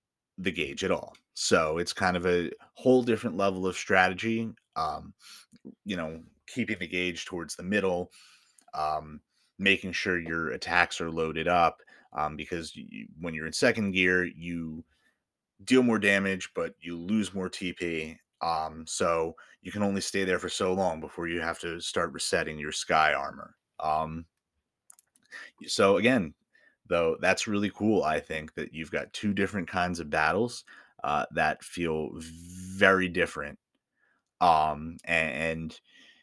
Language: English